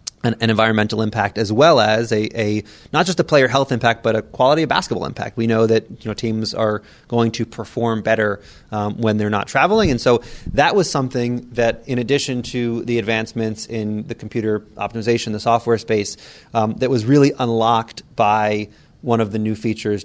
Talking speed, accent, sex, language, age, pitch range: 195 wpm, American, male, English, 30-49, 105-120 Hz